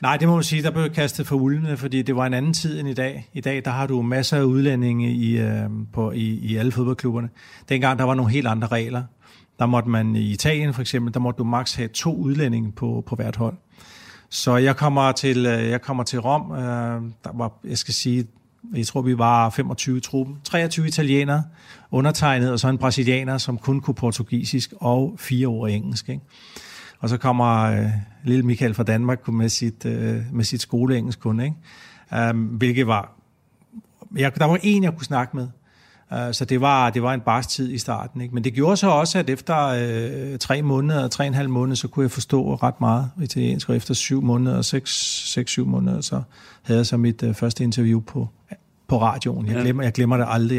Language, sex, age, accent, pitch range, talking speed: Danish, male, 40-59, native, 115-135 Hz, 210 wpm